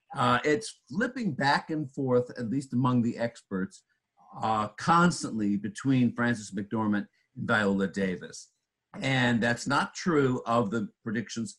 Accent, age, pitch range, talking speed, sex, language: American, 50-69, 100-135 Hz, 135 wpm, male, English